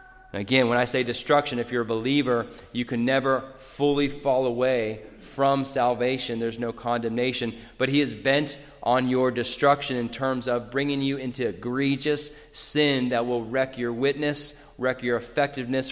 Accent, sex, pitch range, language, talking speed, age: American, male, 115-150 Hz, English, 160 wpm, 30-49